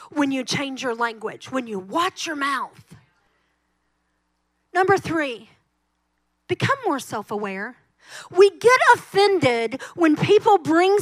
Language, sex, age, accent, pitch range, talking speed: English, female, 40-59, American, 275-405 Hz, 115 wpm